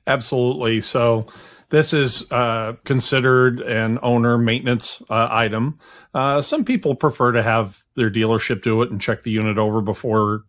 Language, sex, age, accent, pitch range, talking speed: English, male, 50-69, American, 105-125 Hz, 155 wpm